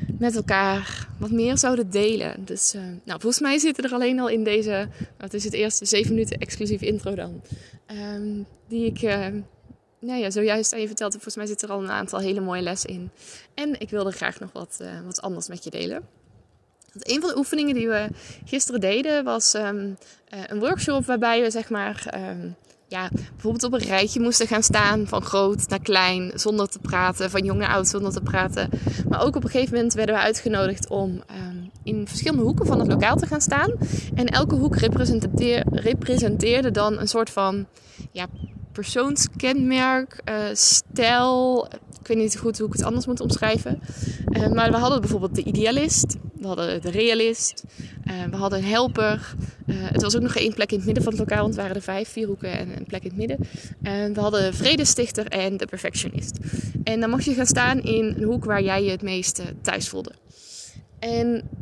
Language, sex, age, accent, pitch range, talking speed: Dutch, female, 20-39, Dutch, 195-235 Hz, 205 wpm